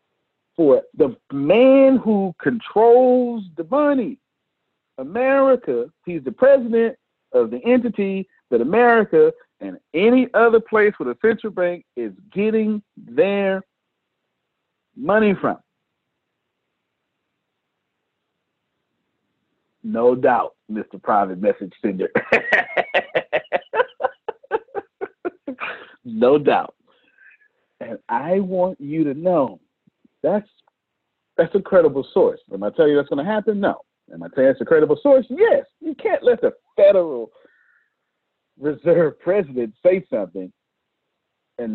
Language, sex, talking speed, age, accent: English, male, 110 wpm, 50-69, American